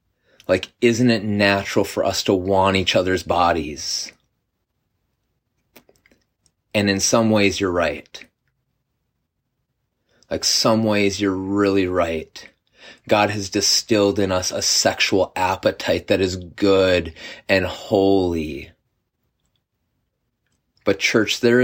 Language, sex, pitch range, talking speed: English, male, 95-115 Hz, 110 wpm